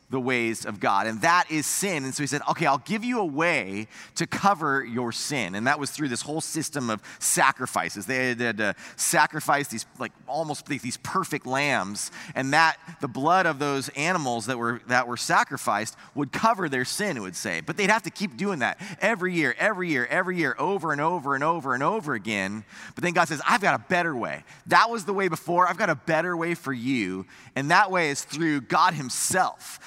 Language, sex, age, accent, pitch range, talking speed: English, male, 30-49, American, 130-180 Hz, 220 wpm